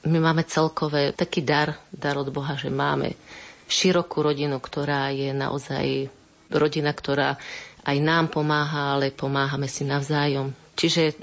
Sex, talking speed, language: female, 135 wpm, Slovak